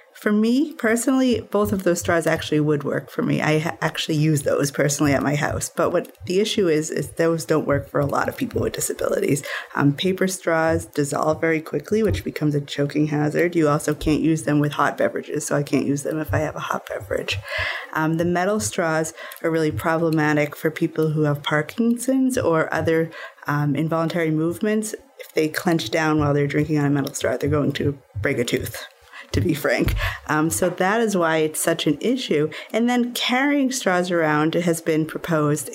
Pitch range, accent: 150-180 Hz, American